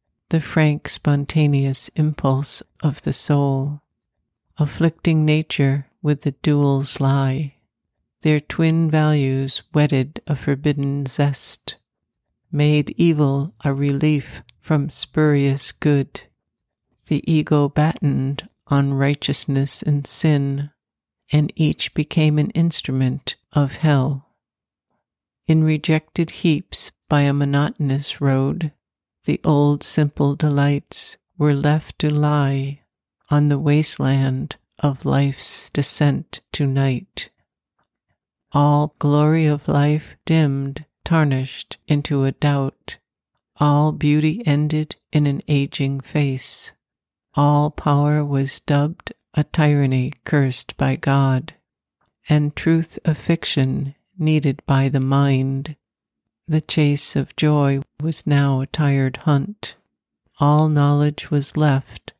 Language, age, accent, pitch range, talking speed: English, 60-79, American, 140-150 Hz, 105 wpm